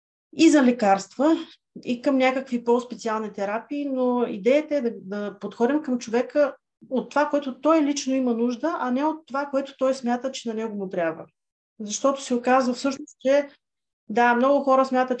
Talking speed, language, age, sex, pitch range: 175 wpm, Bulgarian, 30-49, female, 225-285 Hz